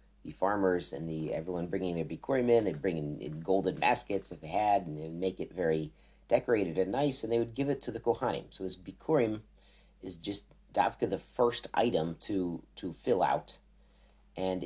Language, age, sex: English, 40-59, male